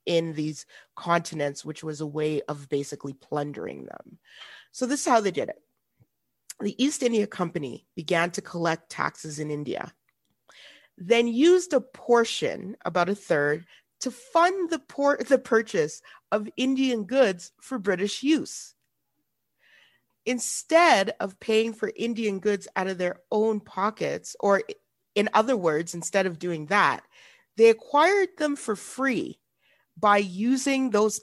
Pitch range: 175-265 Hz